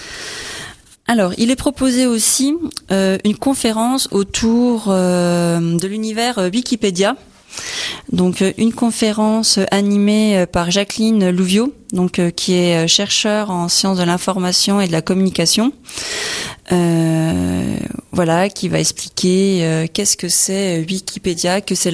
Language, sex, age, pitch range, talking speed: French, female, 20-39, 175-205 Hz, 135 wpm